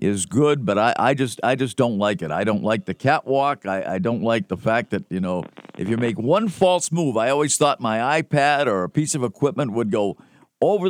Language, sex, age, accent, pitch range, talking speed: English, male, 50-69, American, 110-160 Hz, 240 wpm